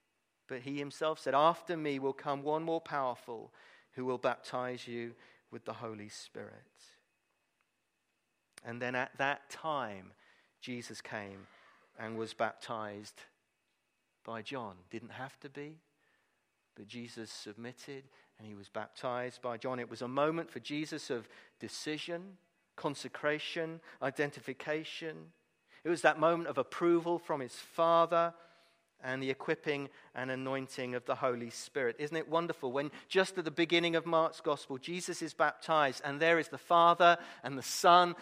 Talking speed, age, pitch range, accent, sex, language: 150 wpm, 40-59, 125-165 Hz, British, male, English